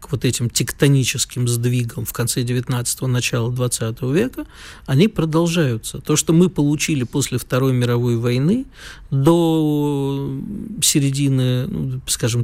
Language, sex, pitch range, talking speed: Russian, male, 125-165 Hz, 120 wpm